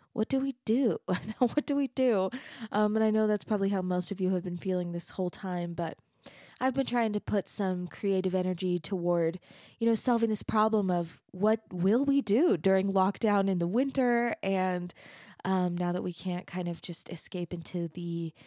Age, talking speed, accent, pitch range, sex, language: 20-39, 200 wpm, American, 180-240 Hz, female, English